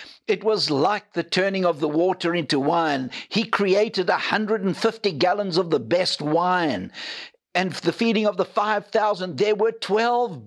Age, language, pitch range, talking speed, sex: 60-79, English, 170-210 Hz, 155 wpm, male